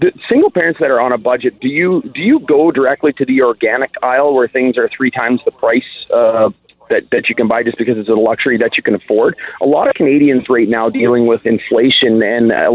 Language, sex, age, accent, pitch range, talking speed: English, male, 30-49, American, 115-145 Hz, 240 wpm